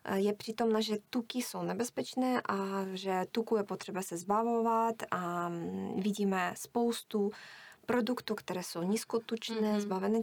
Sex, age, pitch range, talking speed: female, 20-39, 195-225 Hz, 125 wpm